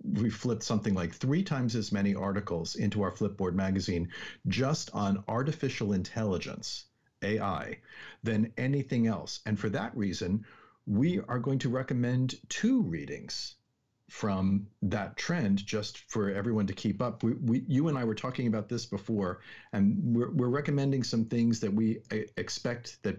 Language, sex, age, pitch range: English, male, 50-69, 100-130 Hz